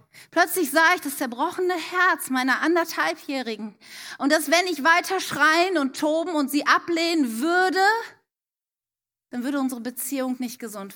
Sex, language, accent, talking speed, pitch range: female, German, German, 140 wpm, 260-360 Hz